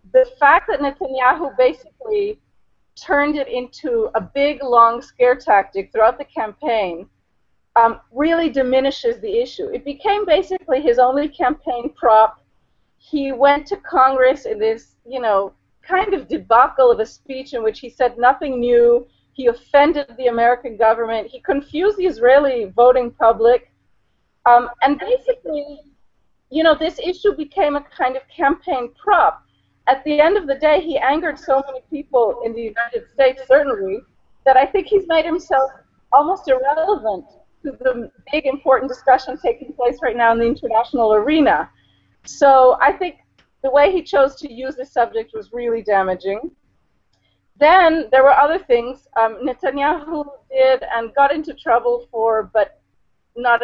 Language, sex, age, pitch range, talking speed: German, female, 40-59, 240-310 Hz, 155 wpm